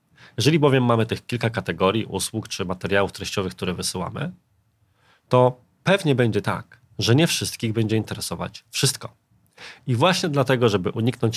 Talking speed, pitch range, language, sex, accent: 145 wpm, 100-135 Hz, Polish, male, native